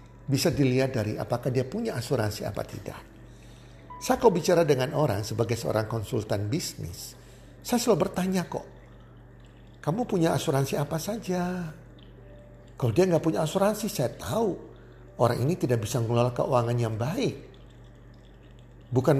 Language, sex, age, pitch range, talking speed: Indonesian, male, 50-69, 120-180 Hz, 135 wpm